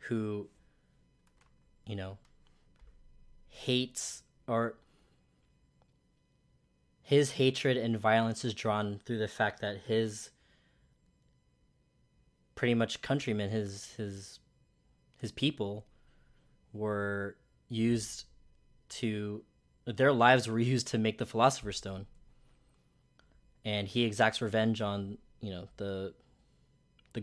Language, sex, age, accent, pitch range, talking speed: English, male, 20-39, American, 95-115 Hz, 95 wpm